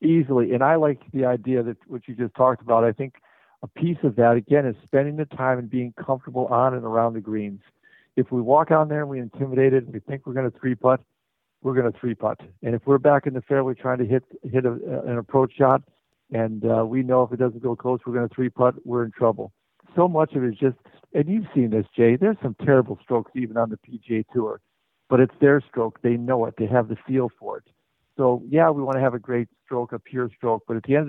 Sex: male